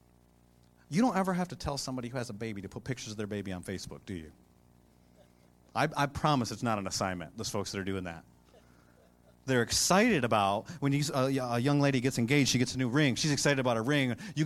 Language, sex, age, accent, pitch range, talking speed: English, male, 30-49, American, 120-185 Hz, 225 wpm